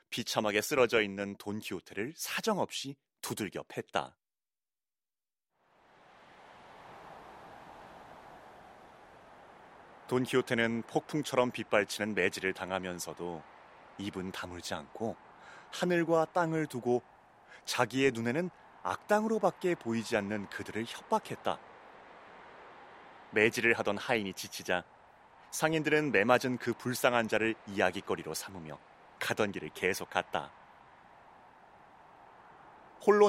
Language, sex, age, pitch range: Korean, male, 30-49, 100-150 Hz